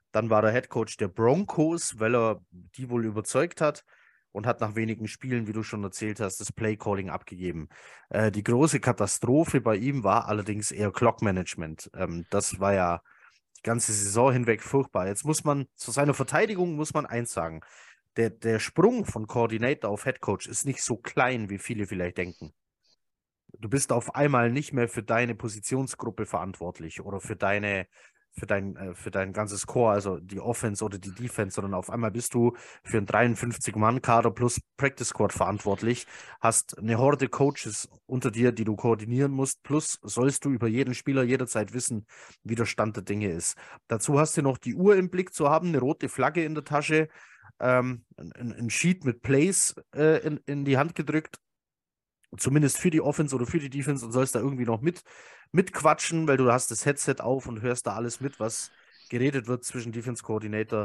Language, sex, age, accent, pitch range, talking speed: German, male, 30-49, German, 105-135 Hz, 185 wpm